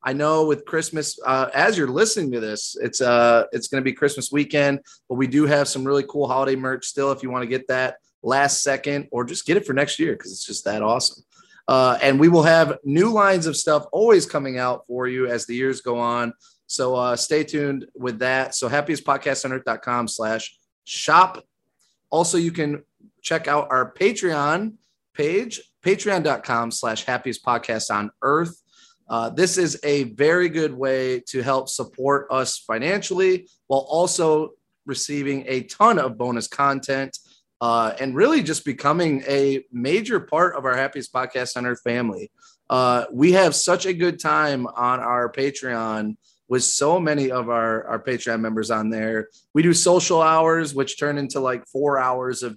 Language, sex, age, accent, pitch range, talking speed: English, male, 30-49, American, 125-150 Hz, 175 wpm